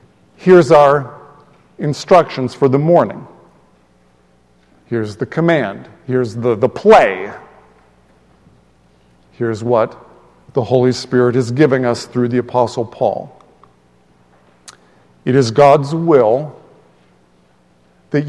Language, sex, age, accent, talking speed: English, male, 50-69, American, 100 wpm